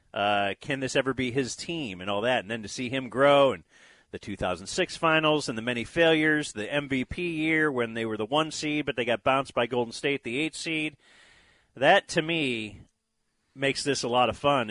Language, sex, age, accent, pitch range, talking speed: English, male, 40-59, American, 110-150 Hz, 210 wpm